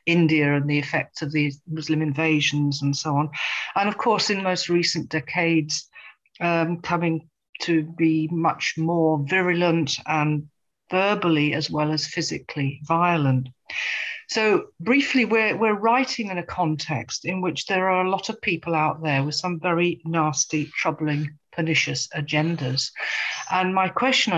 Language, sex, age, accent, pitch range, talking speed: English, female, 50-69, British, 155-185 Hz, 150 wpm